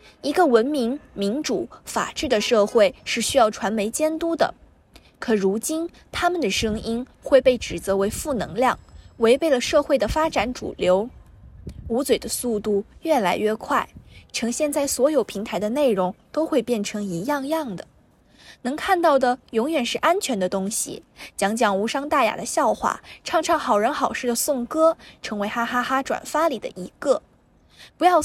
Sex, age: female, 10-29